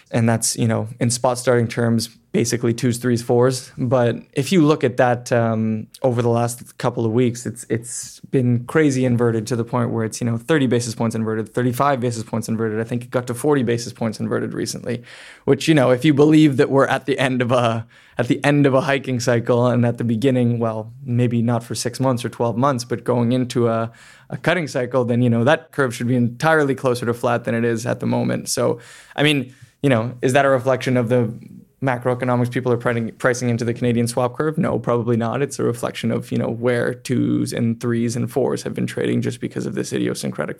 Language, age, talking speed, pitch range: English, 20-39, 230 wpm, 115-130 Hz